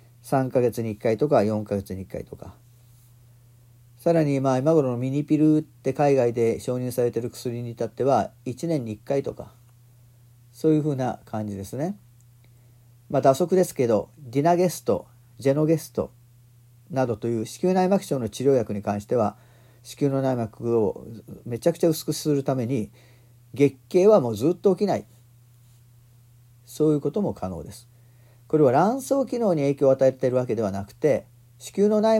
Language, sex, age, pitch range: Japanese, male, 40-59, 120-150 Hz